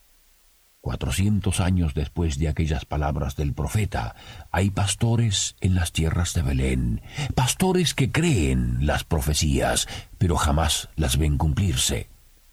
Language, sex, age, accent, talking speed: Spanish, male, 50-69, Spanish, 120 wpm